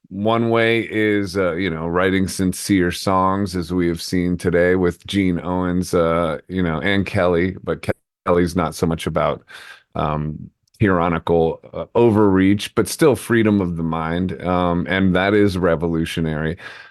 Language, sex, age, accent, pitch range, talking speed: English, male, 30-49, American, 85-105 Hz, 155 wpm